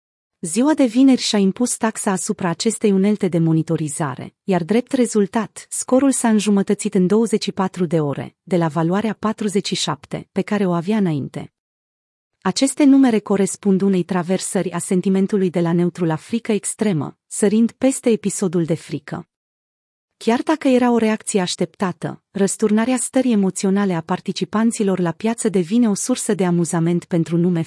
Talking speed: 145 wpm